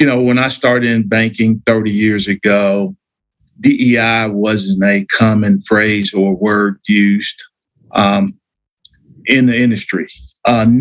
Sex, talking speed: male, 130 wpm